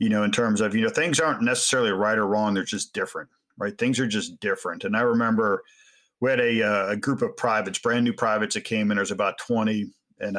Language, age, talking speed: English, 40-59, 245 wpm